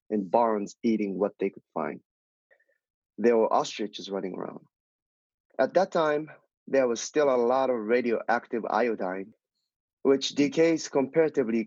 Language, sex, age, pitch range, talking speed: English, male, 30-49, 110-140 Hz, 135 wpm